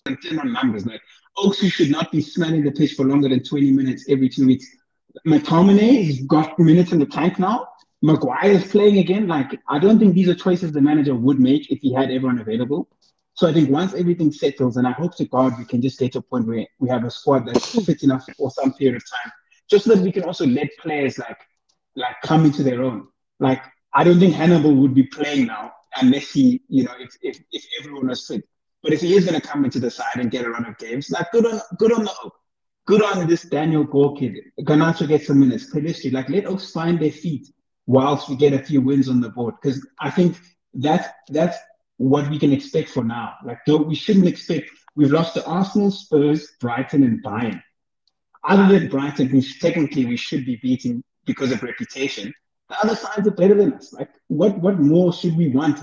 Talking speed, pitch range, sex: 220 wpm, 130-185 Hz, male